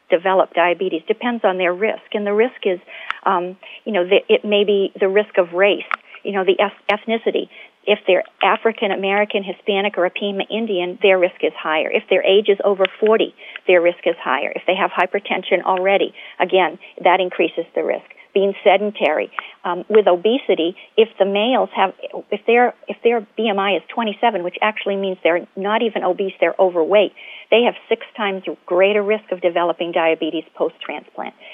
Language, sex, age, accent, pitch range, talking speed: English, female, 50-69, American, 180-205 Hz, 175 wpm